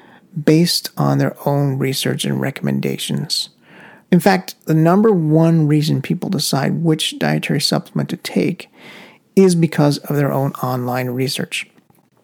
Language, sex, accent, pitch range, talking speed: English, male, American, 135-165 Hz, 130 wpm